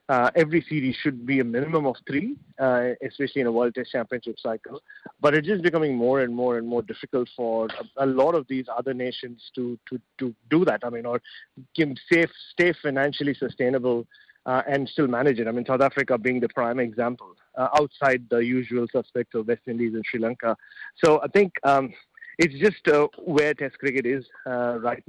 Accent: Indian